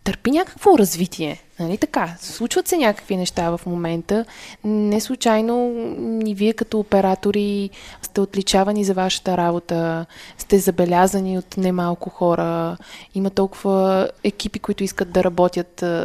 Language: Bulgarian